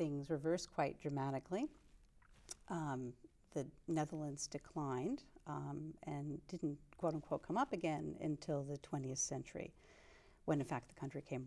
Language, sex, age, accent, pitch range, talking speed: English, female, 50-69, American, 140-165 Hz, 135 wpm